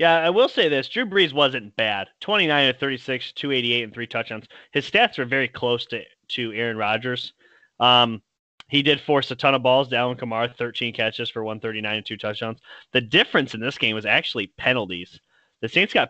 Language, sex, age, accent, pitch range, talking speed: English, male, 30-49, American, 115-140 Hz, 200 wpm